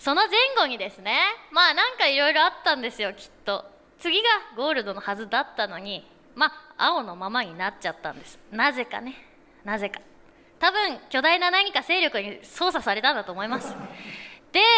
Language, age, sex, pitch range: Japanese, 20-39, female, 245-360 Hz